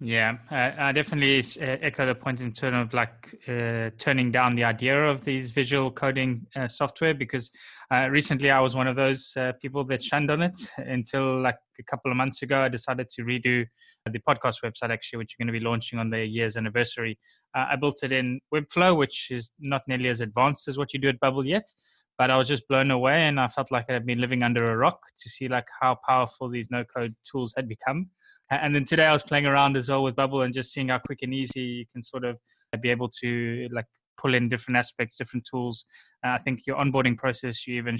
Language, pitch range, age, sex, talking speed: English, 120-135 Hz, 20-39, male, 230 wpm